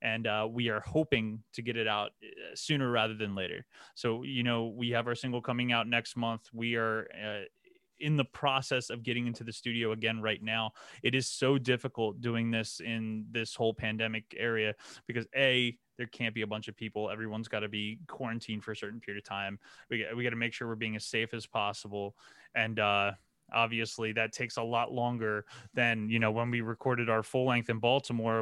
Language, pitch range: English, 110-120 Hz